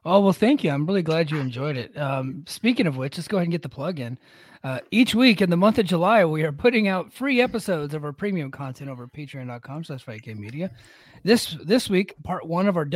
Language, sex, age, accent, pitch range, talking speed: English, male, 30-49, American, 150-215 Hz, 240 wpm